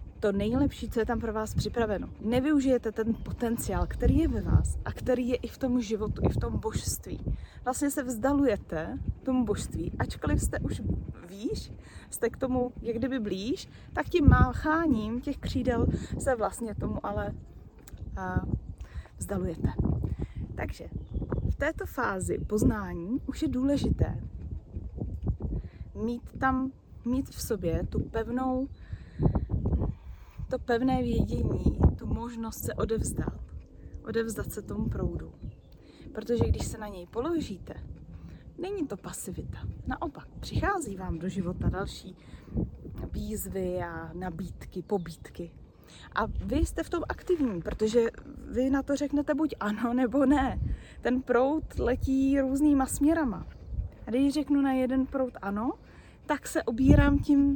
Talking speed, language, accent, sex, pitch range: 130 wpm, Czech, native, female, 215-275 Hz